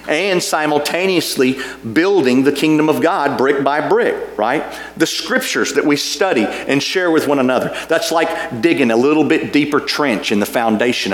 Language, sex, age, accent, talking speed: English, male, 40-59, American, 170 wpm